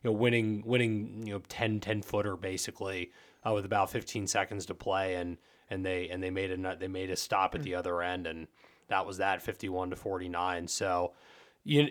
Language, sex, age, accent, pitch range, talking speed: English, male, 20-39, American, 95-125 Hz, 205 wpm